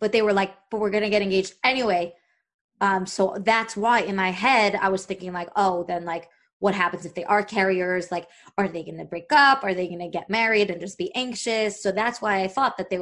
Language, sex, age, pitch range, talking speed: English, female, 20-39, 185-210 Hz, 255 wpm